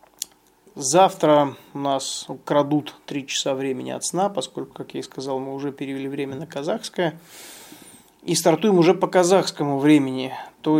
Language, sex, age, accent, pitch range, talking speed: Russian, male, 20-39, native, 135-160 Hz, 150 wpm